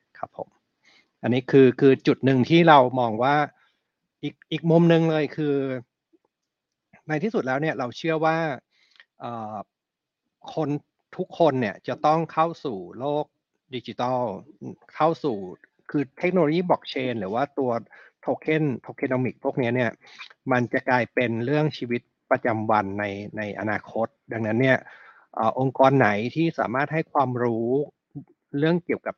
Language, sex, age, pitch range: Thai, male, 60-79, 115-145 Hz